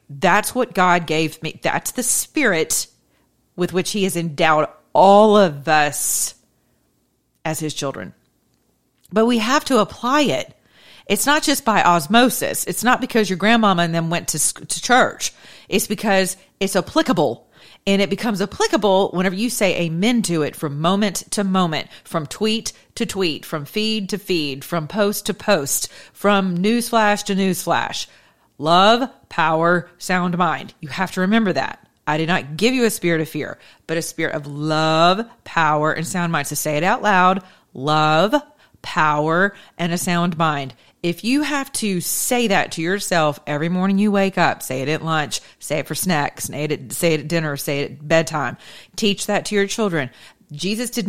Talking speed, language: 175 wpm, English